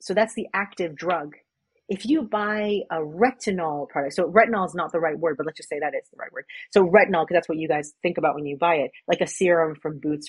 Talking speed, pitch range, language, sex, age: 260 wpm, 155-195 Hz, English, female, 30-49